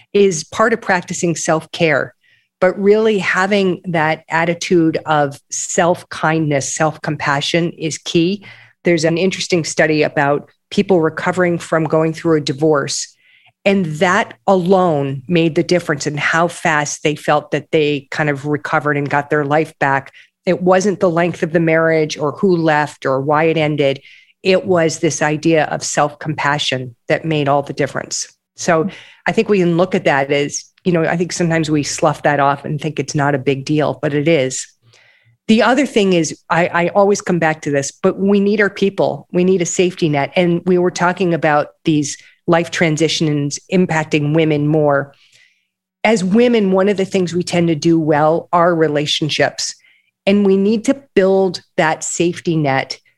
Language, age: English, 40-59